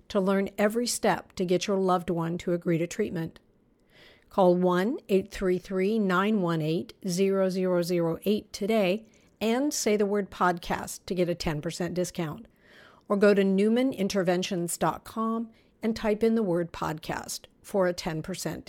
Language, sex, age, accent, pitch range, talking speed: English, female, 50-69, American, 180-230 Hz, 125 wpm